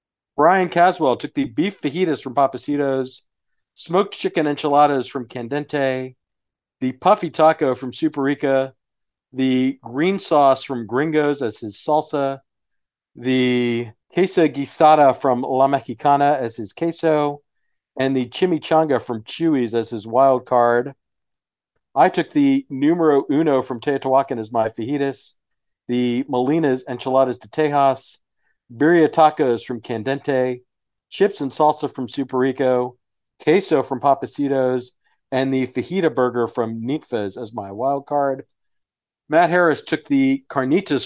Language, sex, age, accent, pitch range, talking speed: English, male, 50-69, American, 125-145 Hz, 130 wpm